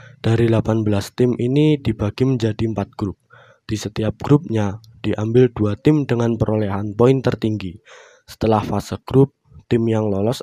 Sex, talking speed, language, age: male, 140 wpm, Indonesian, 20-39